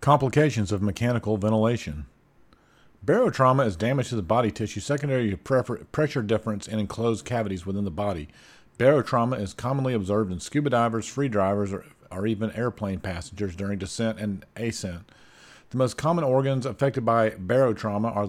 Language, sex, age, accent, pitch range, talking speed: English, male, 50-69, American, 100-120 Hz, 155 wpm